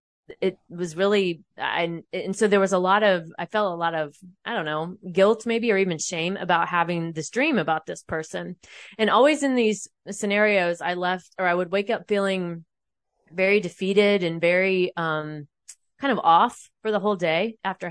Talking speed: 190 wpm